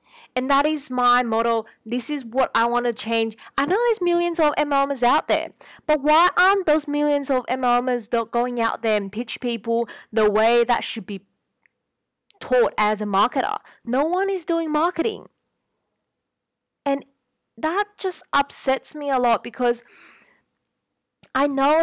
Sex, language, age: female, English, 20-39